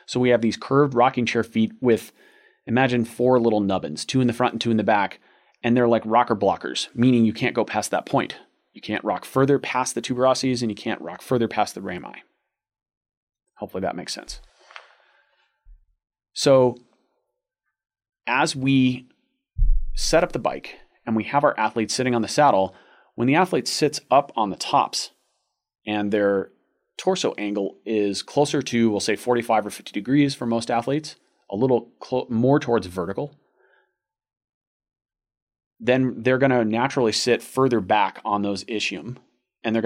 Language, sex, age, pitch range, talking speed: English, male, 30-49, 105-130 Hz, 170 wpm